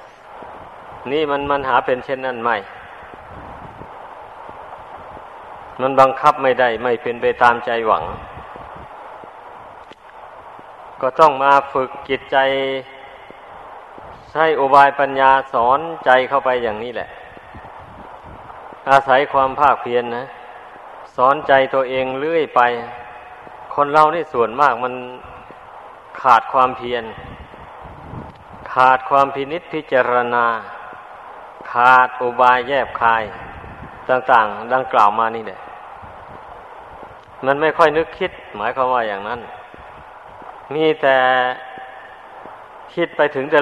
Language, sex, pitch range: Thai, male, 125-140 Hz